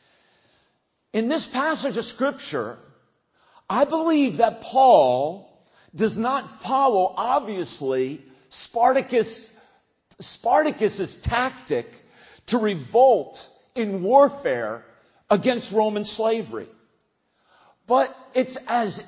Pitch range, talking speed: 185-270 Hz, 80 wpm